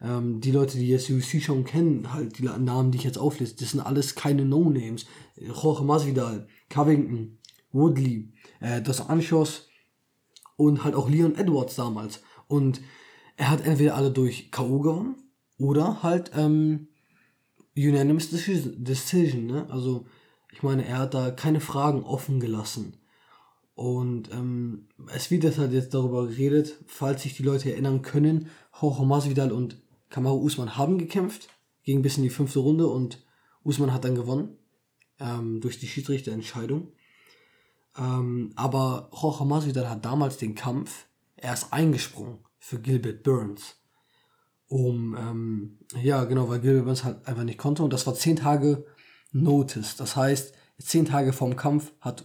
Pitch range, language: 125-150 Hz, German